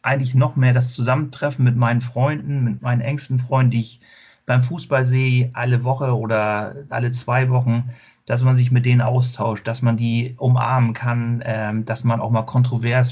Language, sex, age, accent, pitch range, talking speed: German, male, 40-59, German, 120-135 Hz, 185 wpm